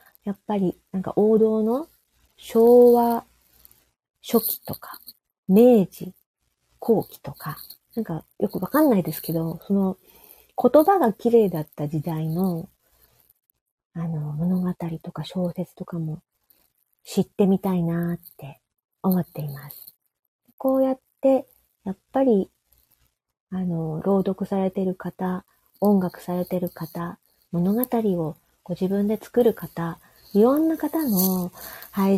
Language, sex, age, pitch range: Japanese, female, 40-59, 180-225 Hz